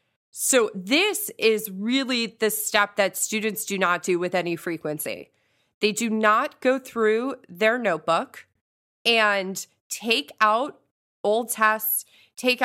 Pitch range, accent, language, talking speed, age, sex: 180-240 Hz, American, English, 130 wpm, 30-49, female